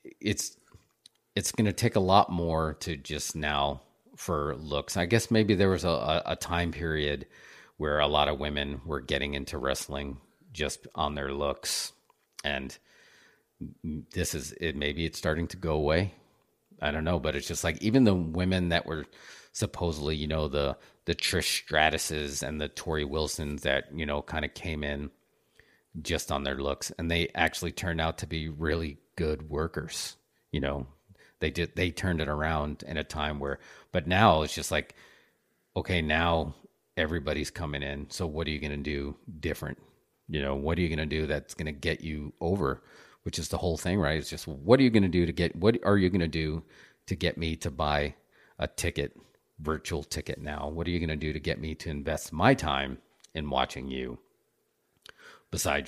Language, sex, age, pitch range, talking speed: English, male, 40-59, 75-85 Hz, 195 wpm